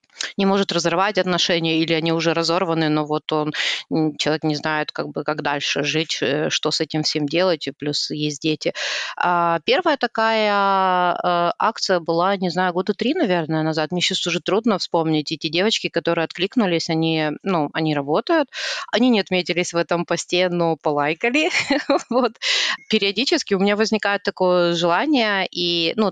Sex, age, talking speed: female, 30-49, 155 wpm